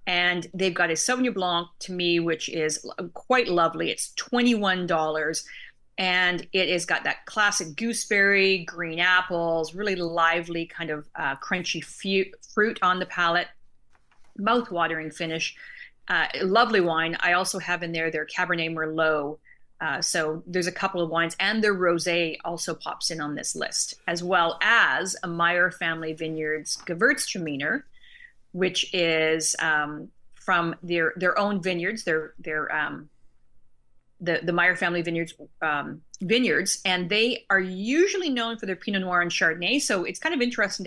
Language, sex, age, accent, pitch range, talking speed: English, female, 40-59, American, 165-200 Hz, 155 wpm